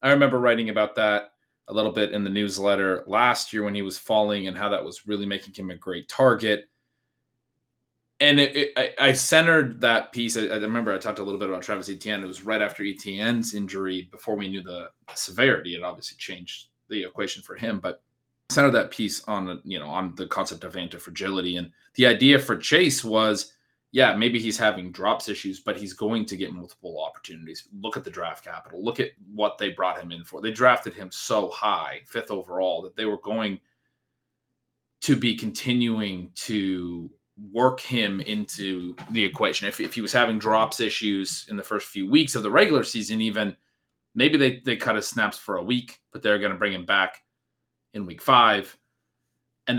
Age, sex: 20-39, male